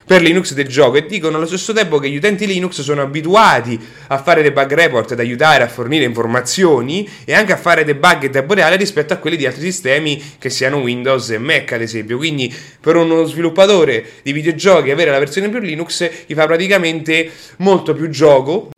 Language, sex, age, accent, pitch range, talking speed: English, male, 30-49, Italian, 130-175 Hz, 200 wpm